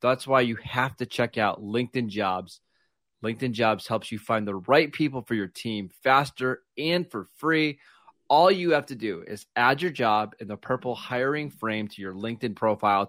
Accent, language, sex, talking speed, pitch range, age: American, English, male, 195 wpm, 110-140 Hz, 30-49